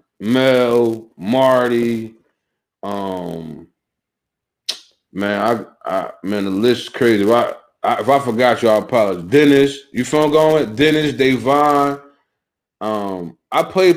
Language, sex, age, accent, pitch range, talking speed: English, male, 30-49, American, 125-170 Hz, 130 wpm